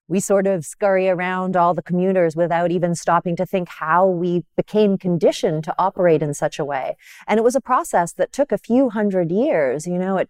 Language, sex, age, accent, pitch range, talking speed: English, female, 40-59, American, 170-220 Hz, 215 wpm